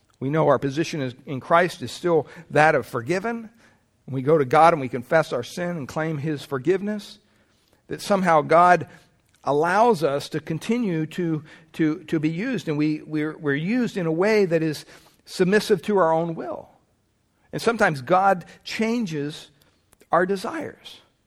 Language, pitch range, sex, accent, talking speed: English, 155-200 Hz, male, American, 165 wpm